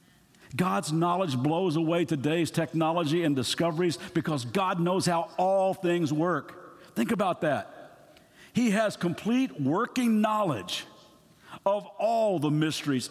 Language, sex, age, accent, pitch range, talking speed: English, male, 50-69, American, 155-210 Hz, 125 wpm